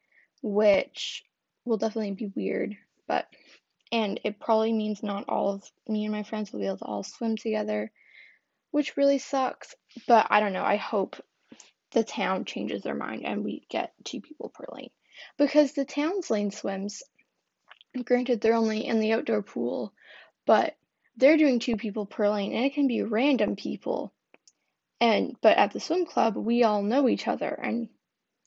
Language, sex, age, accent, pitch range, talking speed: English, female, 10-29, American, 210-265 Hz, 175 wpm